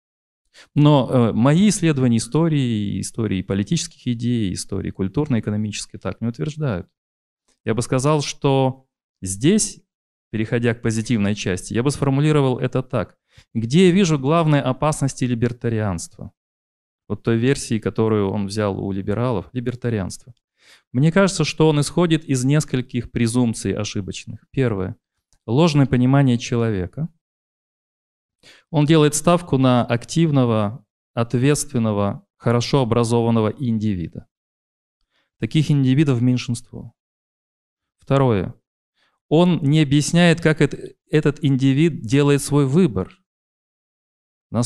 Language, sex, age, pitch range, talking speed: Ukrainian, male, 30-49, 110-145 Hz, 105 wpm